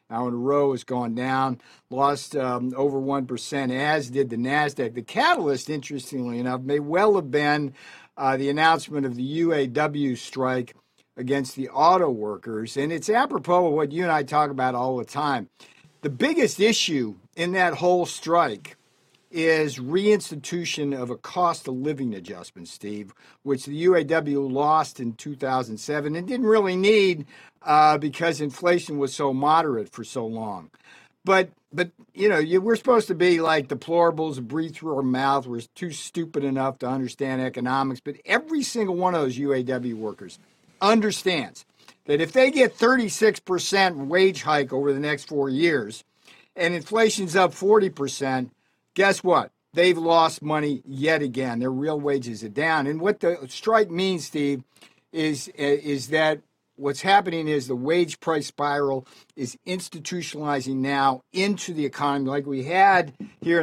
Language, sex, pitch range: English, male, 135-175 Hz